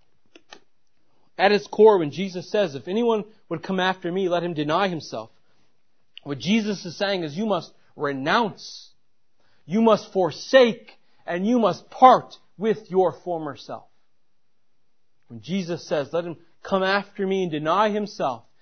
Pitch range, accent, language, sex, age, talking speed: 165-235 Hz, American, English, male, 40-59, 150 wpm